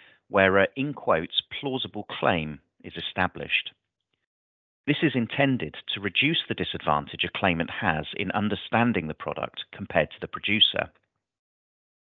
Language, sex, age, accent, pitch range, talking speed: English, male, 30-49, British, 80-125 Hz, 130 wpm